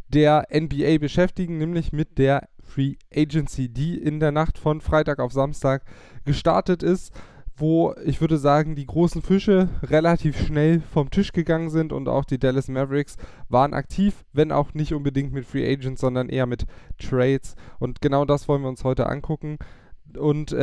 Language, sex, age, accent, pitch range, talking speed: German, male, 10-29, German, 125-155 Hz, 170 wpm